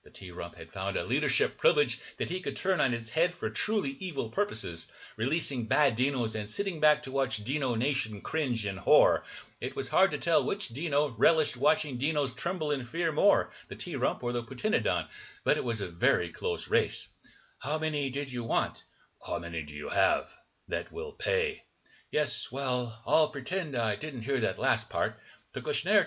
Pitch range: 115-160 Hz